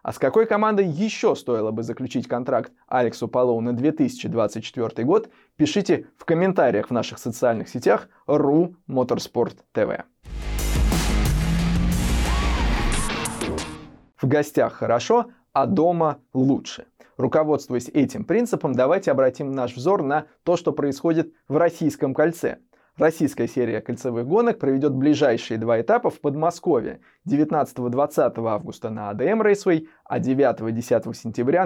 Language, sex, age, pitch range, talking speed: Russian, male, 20-39, 120-165 Hz, 110 wpm